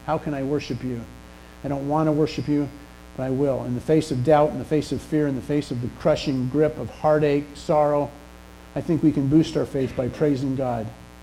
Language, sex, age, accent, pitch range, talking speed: English, male, 50-69, American, 120-150 Hz, 235 wpm